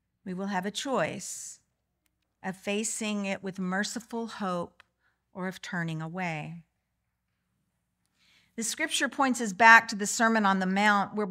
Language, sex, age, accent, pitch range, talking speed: English, female, 50-69, American, 185-230 Hz, 145 wpm